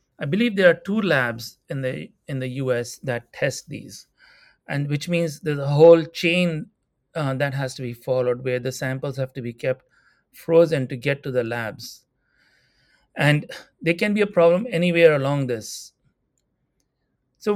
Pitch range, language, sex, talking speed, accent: 130-175 Hz, English, male, 170 wpm, Indian